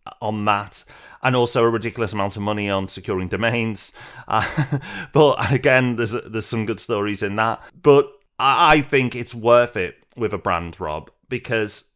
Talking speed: 165 wpm